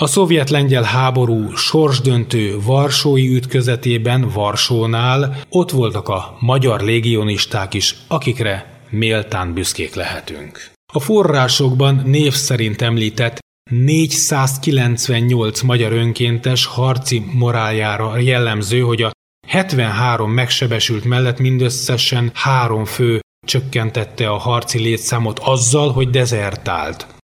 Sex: male